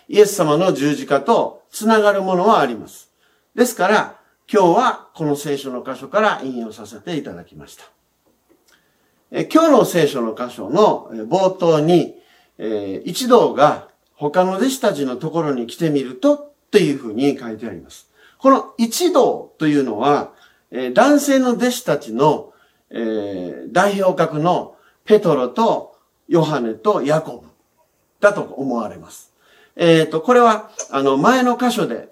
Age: 50-69